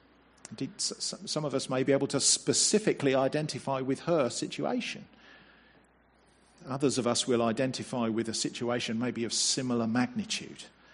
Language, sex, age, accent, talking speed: English, male, 50-69, British, 135 wpm